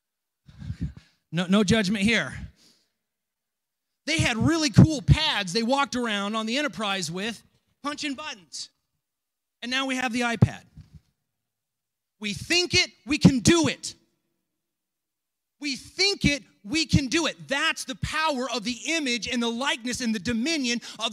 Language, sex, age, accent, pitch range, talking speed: English, male, 30-49, American, 230-305 Hz, 145 wpm